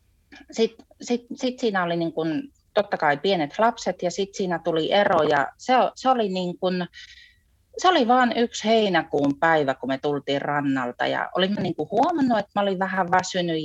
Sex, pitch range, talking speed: female, 145-195 Hz, 165 wpm